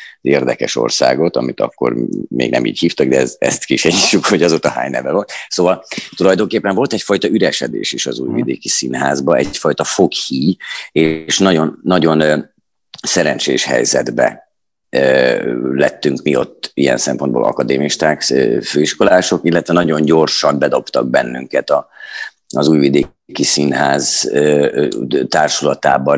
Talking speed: 110 wpm